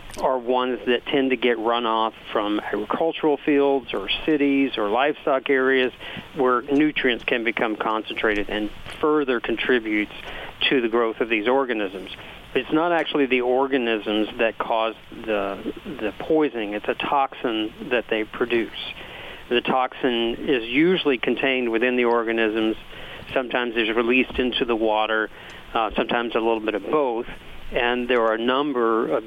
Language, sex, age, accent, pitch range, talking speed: English, male, 50-69, American, 110-130 Hz, 150 wpm